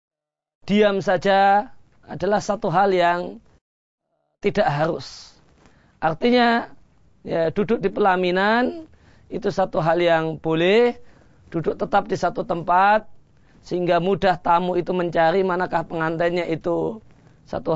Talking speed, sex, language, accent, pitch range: 110 wpm, male, Indonesian, native, 165-195 Hz